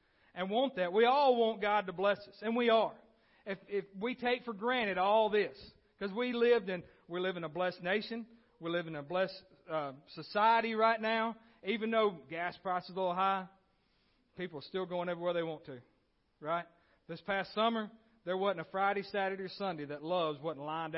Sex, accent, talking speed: male, American, 195 wpm